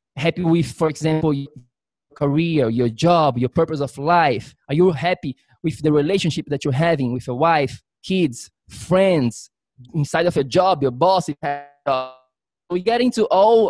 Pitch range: 140-185 Hz